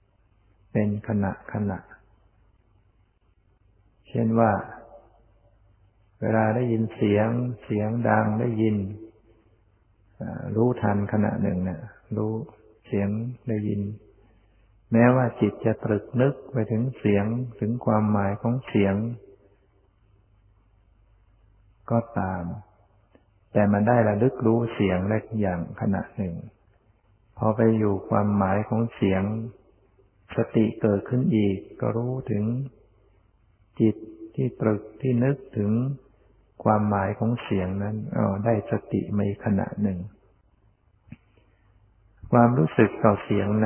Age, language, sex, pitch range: 60-79, Thai, male, 100-110 Hz